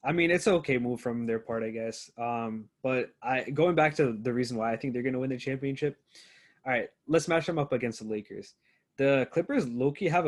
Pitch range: 115-135 Hz